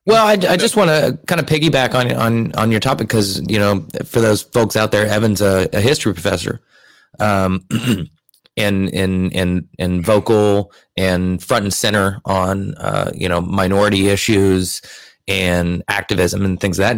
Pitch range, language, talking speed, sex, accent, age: 95-115 Hz, English, 175 wpm, male, American, 20-39